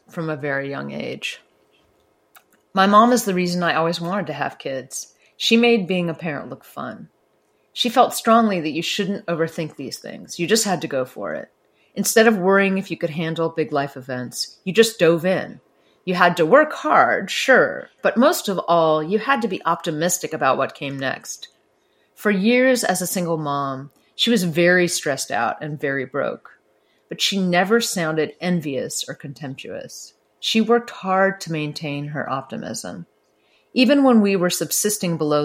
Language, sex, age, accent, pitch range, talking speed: English, female, 30-49, American, 150-205 Hz, 180 wpm